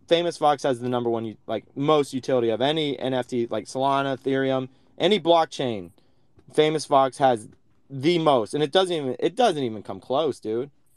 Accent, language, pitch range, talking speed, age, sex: American, English, 125-160 Hz, 175 wpm, 20-39, male